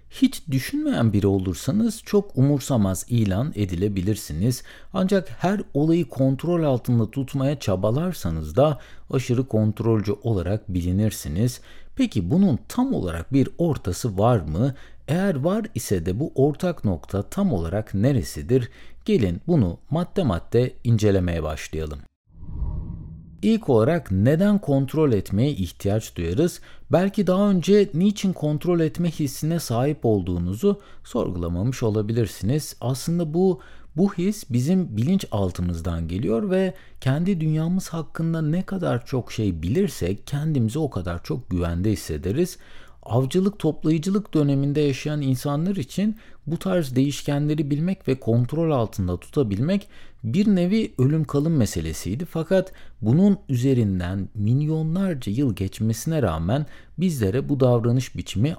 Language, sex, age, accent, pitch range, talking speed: Turkish, male, 60-79, native, 105-170 Hz, 115 wpm